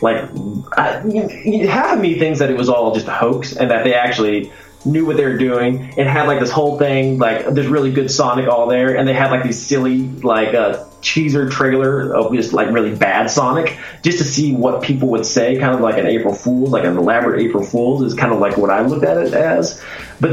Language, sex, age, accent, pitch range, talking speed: English, male, 20-39, American, 105-140 Hz, 240 wpm